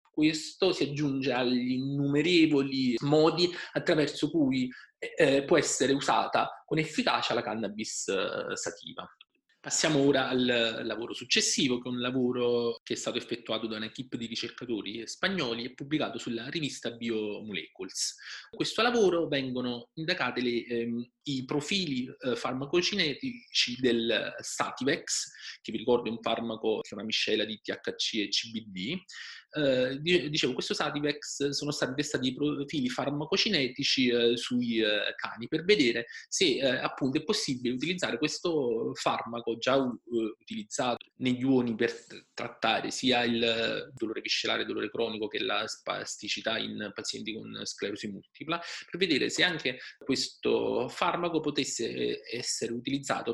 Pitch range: 120-170 Hz